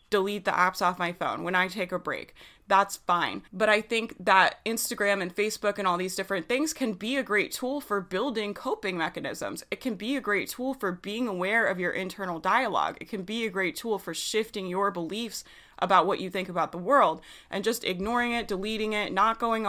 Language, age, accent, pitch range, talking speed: English, 20-39, American, 185-225 Hz, 220 wpm